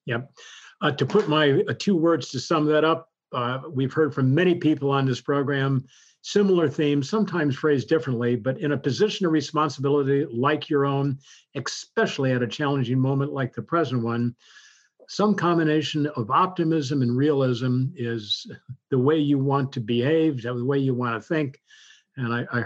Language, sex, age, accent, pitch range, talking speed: English, male, 50-69, American, 125-155 Hz, 175 wpm